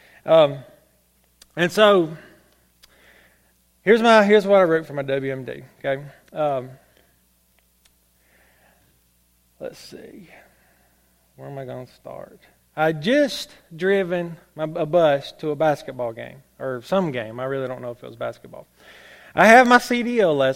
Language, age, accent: English, 30-49, American